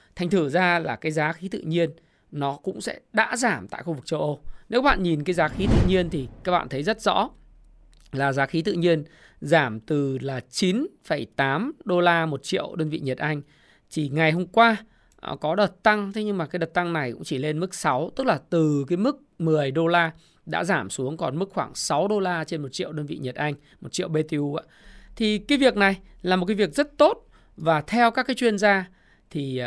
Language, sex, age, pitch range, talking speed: Vietnamese, male, 20-39, 150-205 Hz, 230 wpm